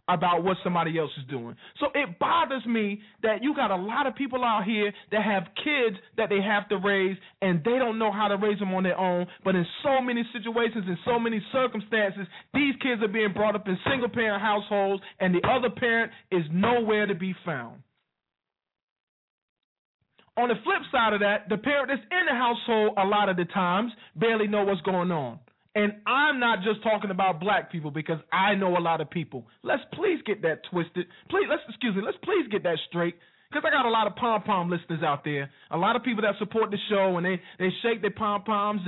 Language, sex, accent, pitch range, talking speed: English, male, American, 175-260 Hz, 215 wpm